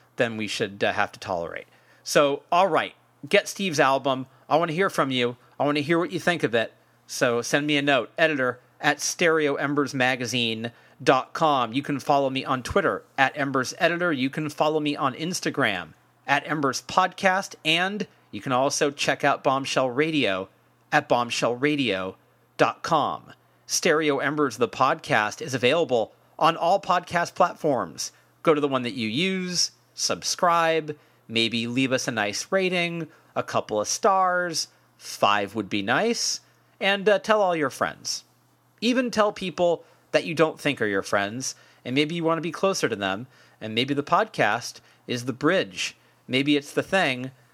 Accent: American